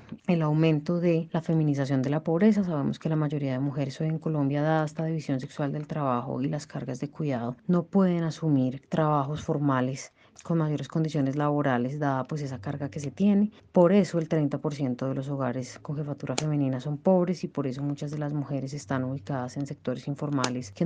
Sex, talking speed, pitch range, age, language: female, 200 wpm, 135-155 Hz, 30-49, Spanish